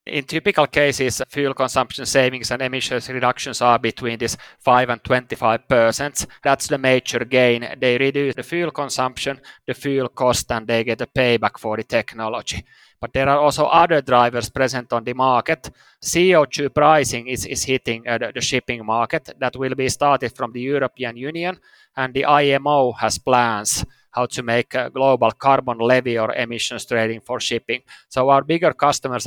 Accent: Finnish